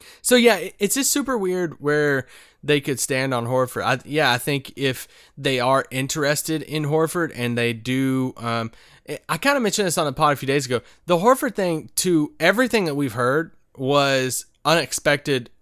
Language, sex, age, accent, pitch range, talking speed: English, male, 20-39, American, 125-155 Hz, 185 wpm